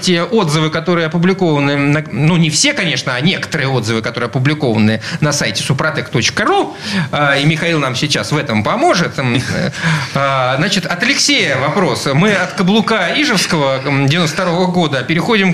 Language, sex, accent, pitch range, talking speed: Russian, male, native, 145-190 Hz, 130 wpm